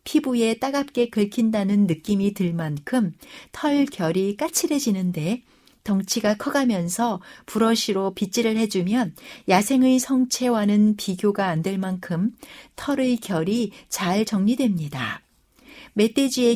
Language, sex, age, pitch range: Korean, female, 60-79, 185-250 Hz